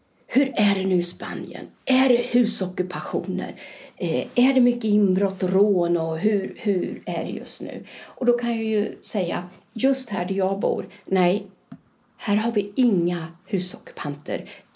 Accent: native